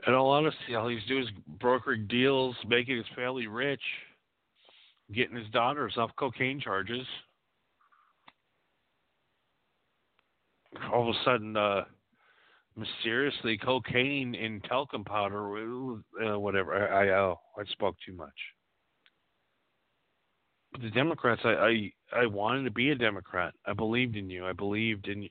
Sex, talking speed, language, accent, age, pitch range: male, 135 wpm, English, American, 40-59, 100-125 Hz